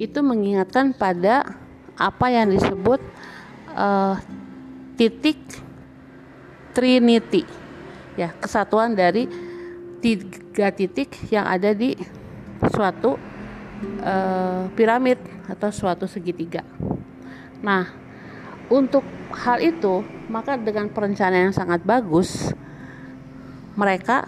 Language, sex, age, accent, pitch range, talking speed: Indonesian, female, 50-69, native, 175-220 Hz, 85 wpm